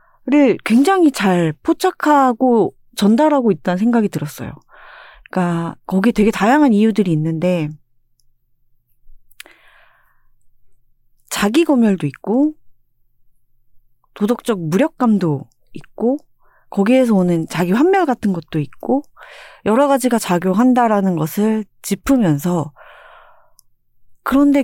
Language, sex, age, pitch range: Korean, female, 30-49, 170-255 Hz